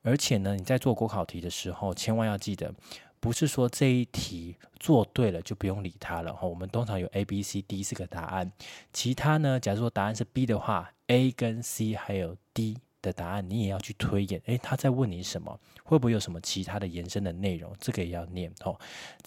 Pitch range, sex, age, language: 90-115 Hz, male, 20-39, Chinese